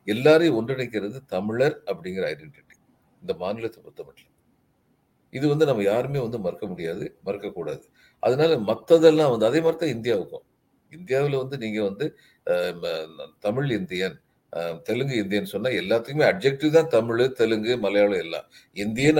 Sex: male